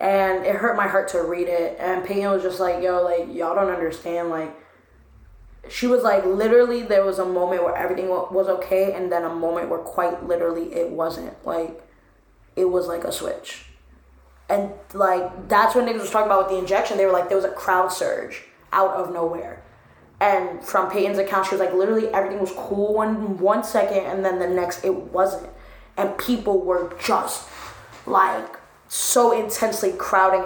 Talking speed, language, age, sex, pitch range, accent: 190 wpm, English, 10-29, female, 180-205 Hz, American